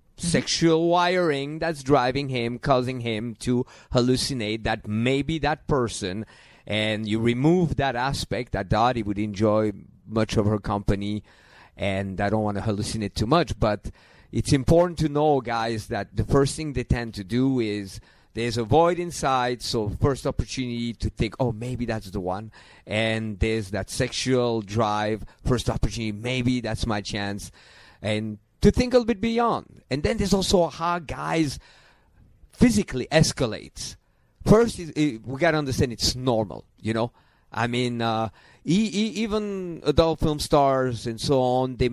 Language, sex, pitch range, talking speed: English, male, 110-145 Hz, 160 wpm